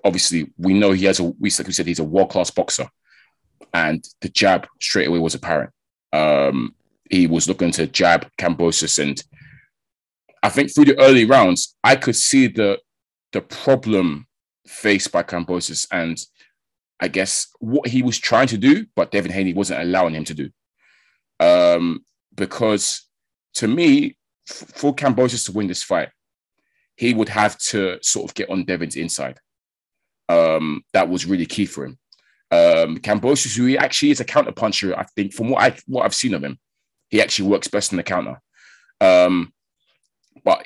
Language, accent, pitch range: English, British, 90-140 Hz